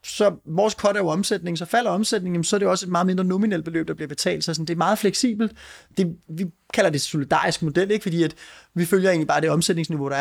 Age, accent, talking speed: 30-49, native, 255 wpm